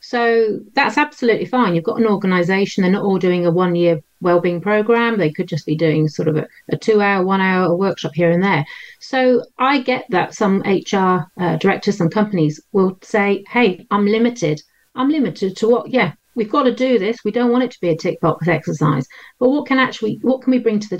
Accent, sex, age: British, female, 40-59